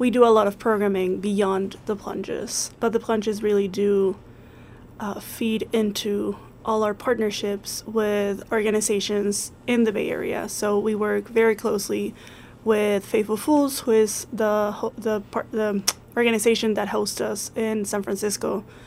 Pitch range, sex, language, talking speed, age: 200-225 Hz, female, English, 145 wpm, 20-39